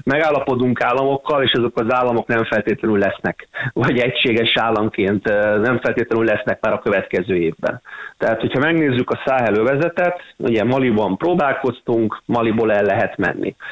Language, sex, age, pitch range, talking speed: Hungarian, male, 30-49, 110-130 Hz, 135 wpm